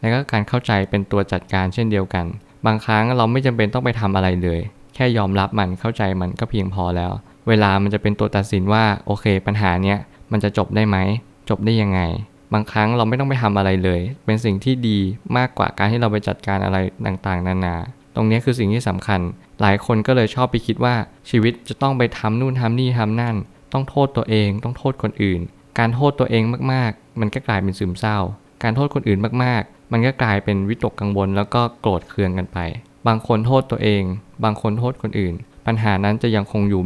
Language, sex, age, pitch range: Thai, male, 20-39, 100-120 Hz